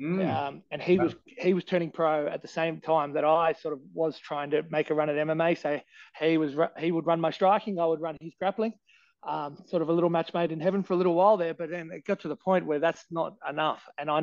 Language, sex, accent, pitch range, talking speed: English, male, Australian, 140-170 Hz, 270 wpm